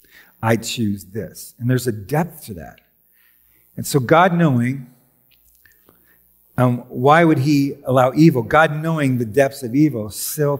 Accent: American